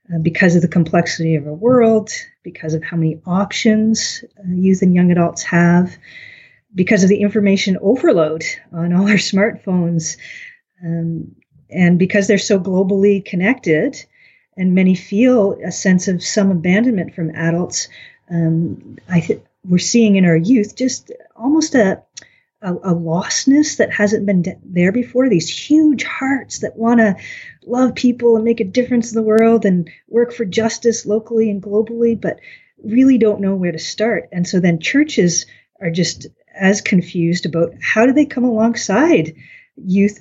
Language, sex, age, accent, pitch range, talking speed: English, female, 40-59, American, 180-235 Hz, 160 wpm